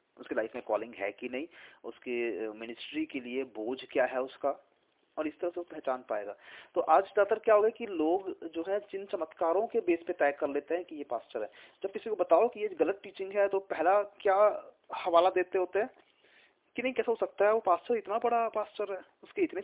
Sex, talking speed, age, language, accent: male, 230 wpm, 30-49, Hindi, native